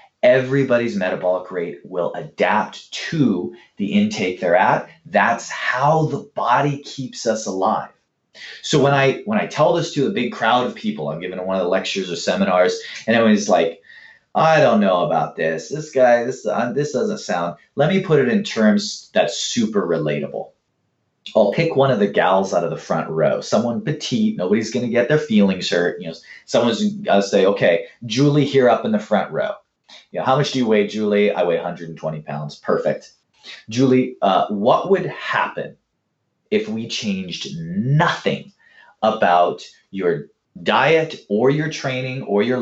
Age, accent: 30-49, American